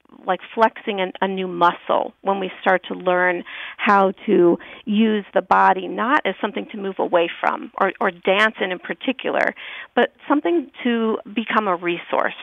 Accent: American